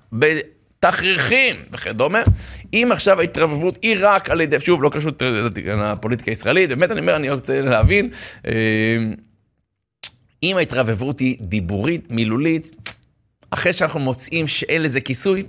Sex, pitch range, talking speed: male, 115-155 Hz, 120 wpm